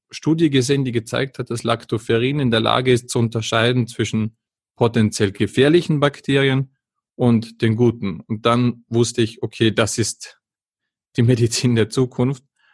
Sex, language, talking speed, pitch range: male, German, 145 wpm, 115-130 Hz